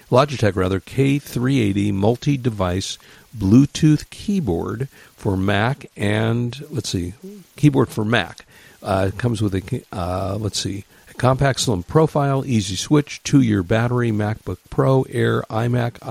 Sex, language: male, English